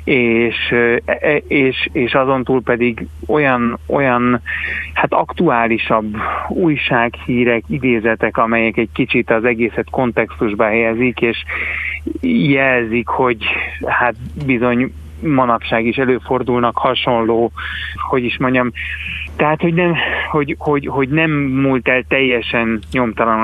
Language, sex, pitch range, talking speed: Hungarian, male, 110-125 Hz, 100 wpm